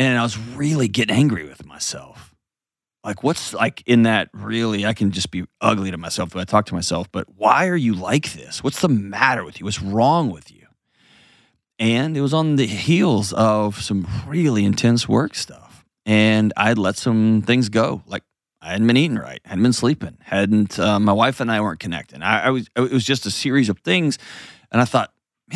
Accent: American